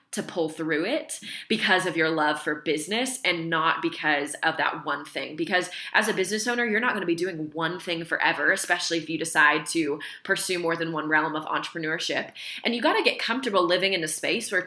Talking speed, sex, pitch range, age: 220 wpm, female, 165-205 Hz, 20-39